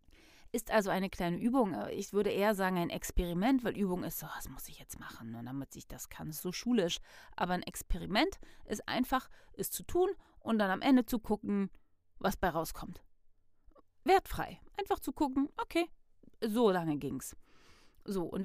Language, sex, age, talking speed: German, female, 30-49, 180 wpm